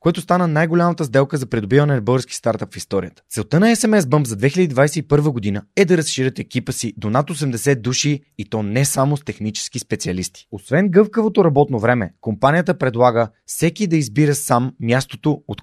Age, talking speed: 20-39, 175 wpm